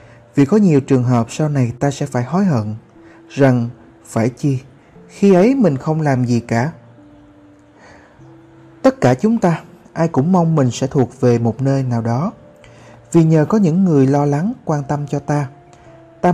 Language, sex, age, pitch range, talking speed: Vietnamese, male, 20-39, 125-175 Hz, 180 wpm